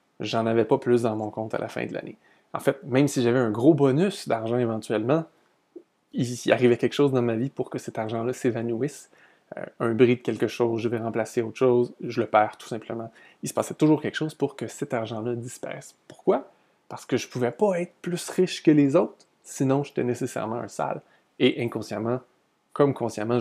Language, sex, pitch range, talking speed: French, male, 115-145 Hz, 210 wpm